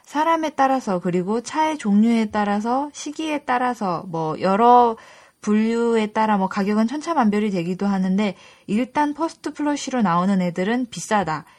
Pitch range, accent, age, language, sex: 190-260 Hz, native, 20-39, Korean, female